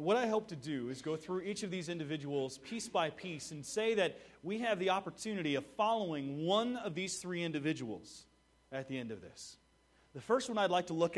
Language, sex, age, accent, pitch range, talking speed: English, male, 30-49, American, 145-205 Hz, 220 wpm